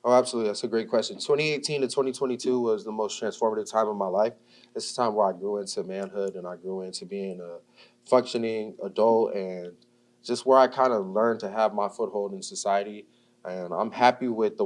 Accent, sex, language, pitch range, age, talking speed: American, male, English, 100-120 Hz, 20-39, 210 wpm